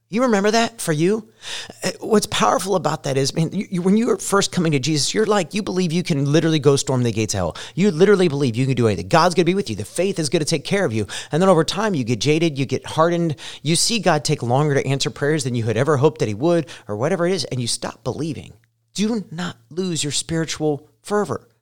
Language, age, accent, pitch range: English, 30-49, American, 115-170 Hz